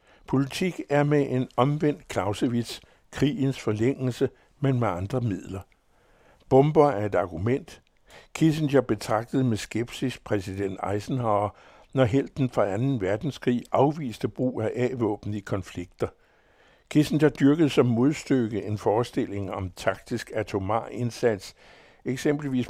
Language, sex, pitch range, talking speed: Danish, male, 105-135 Hz, 115 wpm